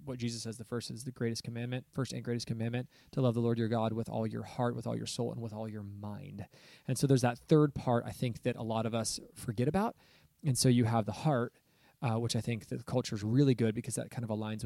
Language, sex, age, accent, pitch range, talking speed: English, male, 20-39, American, 115-130 Hz, 275 wpm